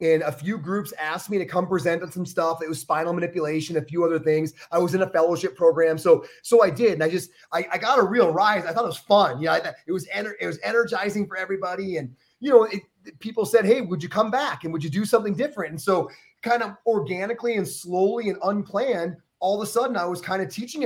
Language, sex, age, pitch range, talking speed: English, male, 30-49, 165-225 Hz, 260 wpm